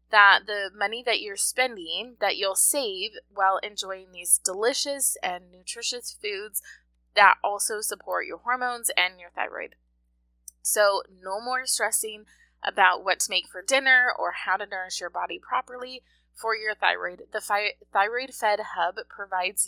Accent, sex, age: American, female, 20-39